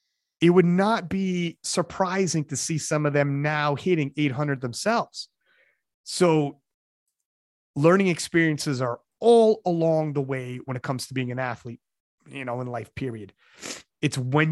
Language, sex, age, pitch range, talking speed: English, male, 30-49, 125-155 Hz, 150 wpm